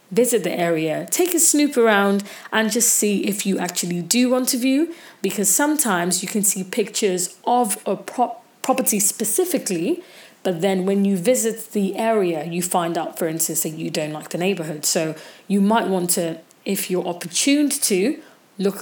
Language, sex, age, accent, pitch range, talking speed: English, female, 30-49, British, 180-245 Hz, 175 wpm